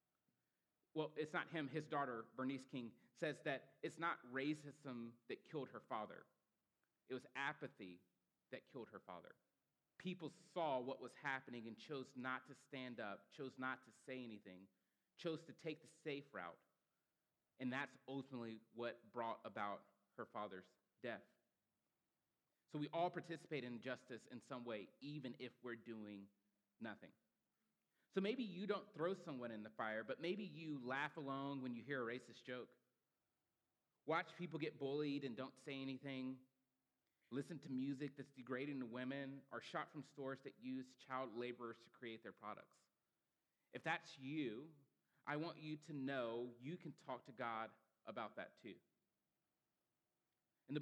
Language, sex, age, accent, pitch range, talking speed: English, male, 30-49, American, 120-145 Hz, 160 wpm